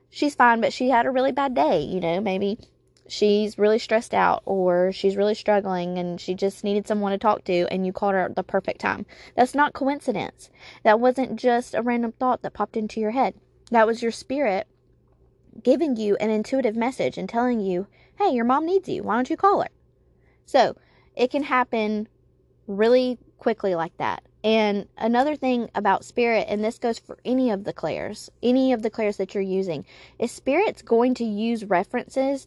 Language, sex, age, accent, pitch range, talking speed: English, female, 20-39, American, 195-250 Hz, 195 wpm